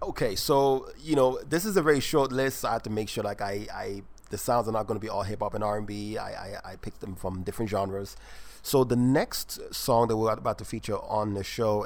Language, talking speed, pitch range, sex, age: English, 260 wpm, 95-115 Hz, male, 30-49